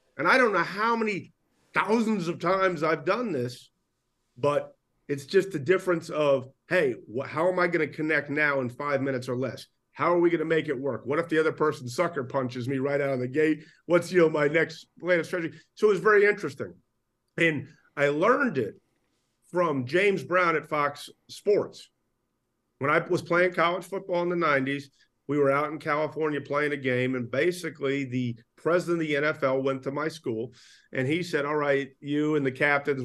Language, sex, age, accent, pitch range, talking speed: English, male, 40-59, American, 130-160 Hz, 200 wpm